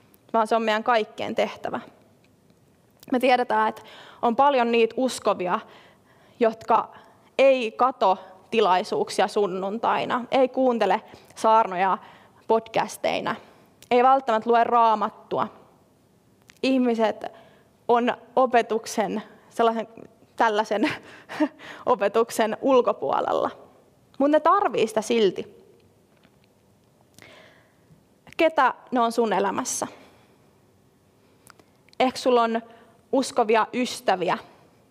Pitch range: 215-260 Hz